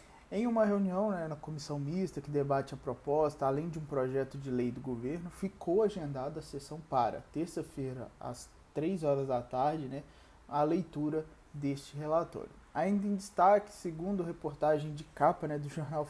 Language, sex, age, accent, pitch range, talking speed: Portuguese, male, 20-39, Brazilian, 145-170 Hz, 170 wpm